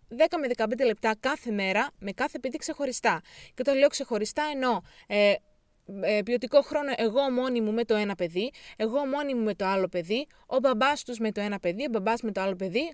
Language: Greek